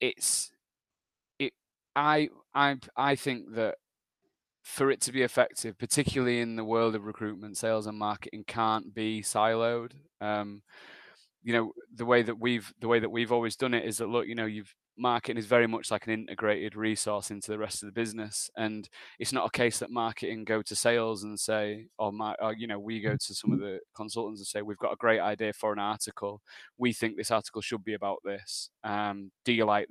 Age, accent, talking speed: 20-39, British, 210 wpm